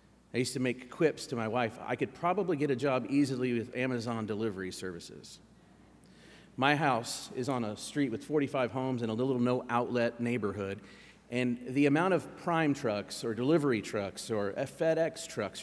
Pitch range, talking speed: 115-140 Hz, 175 wpm